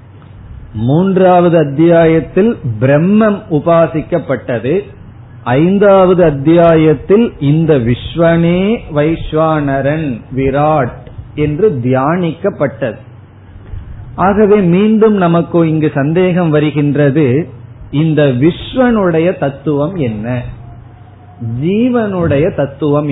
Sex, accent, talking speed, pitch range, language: male, native, 60 wpm, 125-170 Hz, Tamil